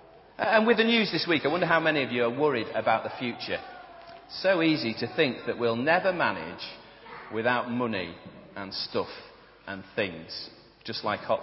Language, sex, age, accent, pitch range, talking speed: English, male, 40-59, British, 125-195 Hz, 180 wpm